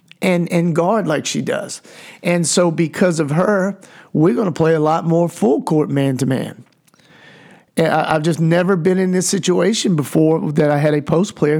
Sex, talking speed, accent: male, 185 wpm, American